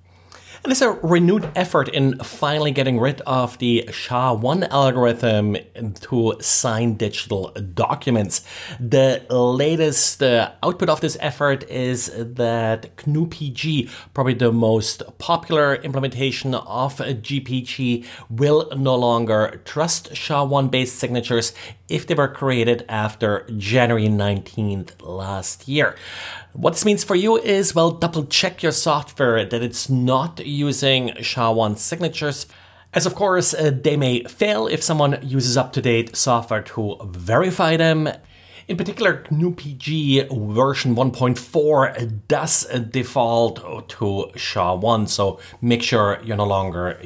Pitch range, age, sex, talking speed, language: 110-145 Hz, 30-49, male, 120 wpm, English